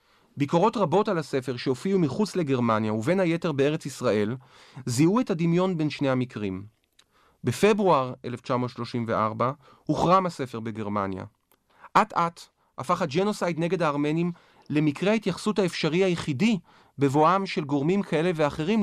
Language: Hebrew